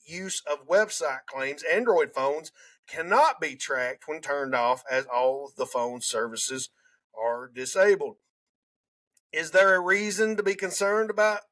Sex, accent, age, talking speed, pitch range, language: male, American, 40-59, 140 wpm, 140-215 Hz, English